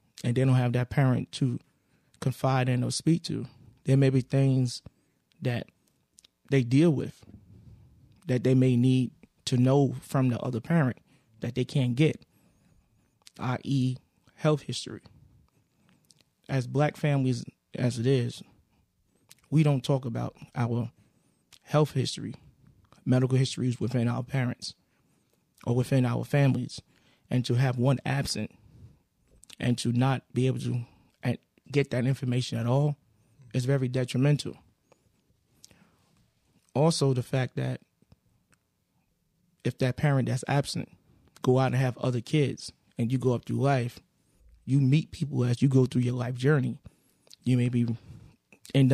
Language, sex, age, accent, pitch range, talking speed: English, male, 20-39, American, 120-140 Hz, 135 wpm